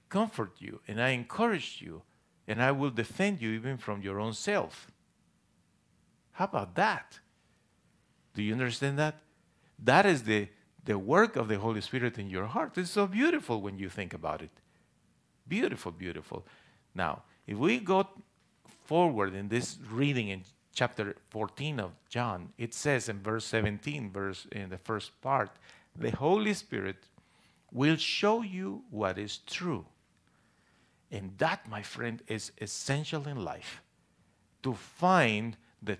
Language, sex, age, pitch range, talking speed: English, male, 50-69, 110-170 Hz, 145 wpm